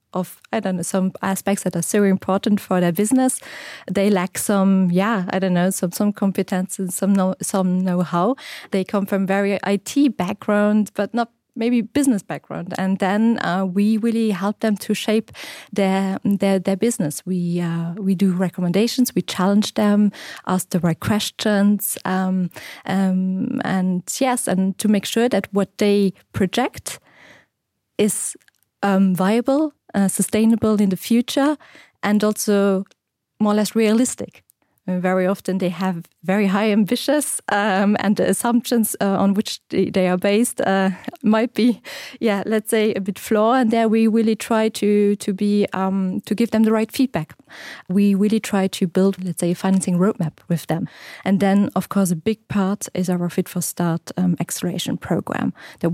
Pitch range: 185-215 Hz